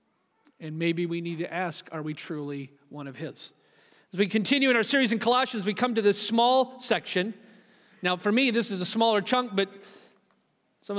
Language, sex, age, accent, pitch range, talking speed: English, male, 40-59, American, 175-230 Hz, 195 wpm